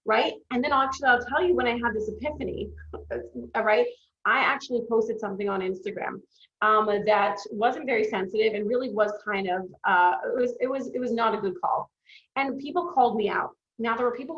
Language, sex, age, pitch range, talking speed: English, female, 30-49, 210-255 Hz, 195 wpm